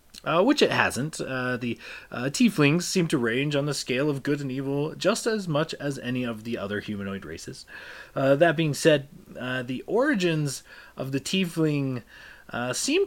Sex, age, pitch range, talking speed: male, 30-49, 105-155 Hz, 185 wpm